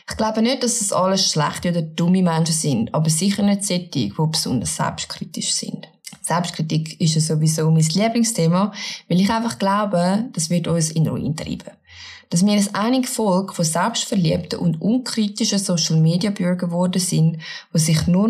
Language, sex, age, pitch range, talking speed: German, female, 20-39, 160-200 Hz, 165 wpm